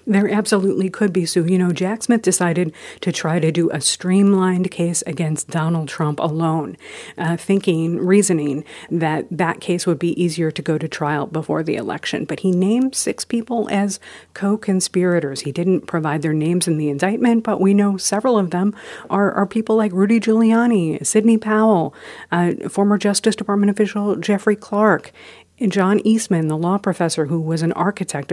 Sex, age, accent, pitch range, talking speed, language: female, 50-69, American, 160-200 Hz, 175 wpm, English